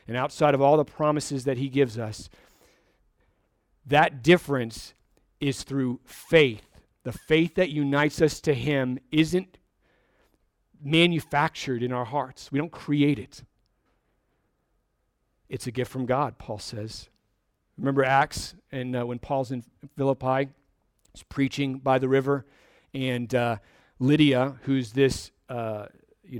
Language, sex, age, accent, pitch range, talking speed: English, male, 40-59, American, 125-150 Hz, 130 wpm